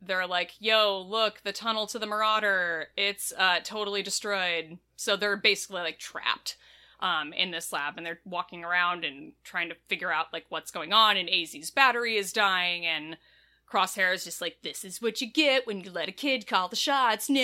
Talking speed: 200 wpm